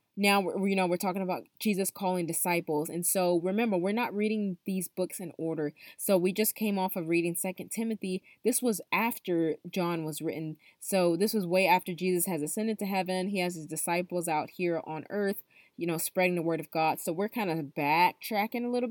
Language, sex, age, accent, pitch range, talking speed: English, female, 20-39, American, 170-200 Hz, 210 wpm